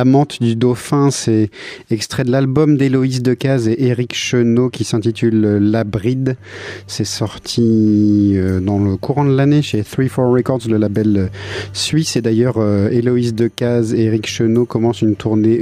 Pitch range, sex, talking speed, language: 105-130 Hz, male, 160 wpm, French